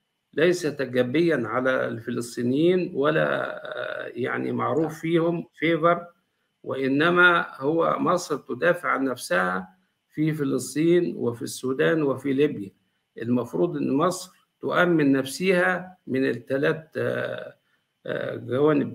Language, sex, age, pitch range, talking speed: Arabic, male, 50-69, 125-165 Hz, 90 wpm